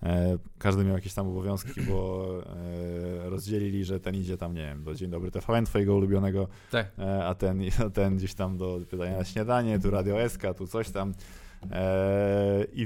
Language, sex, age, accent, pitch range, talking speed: Polish, male, 20-39, native, 90-105 Hz, 170 wpm